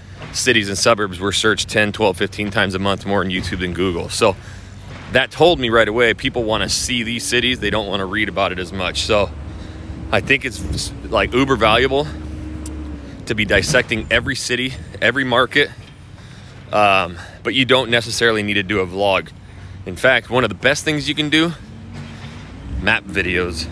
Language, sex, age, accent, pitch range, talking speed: English, male, 30-49, American, 100-140 Hz, 185 wpm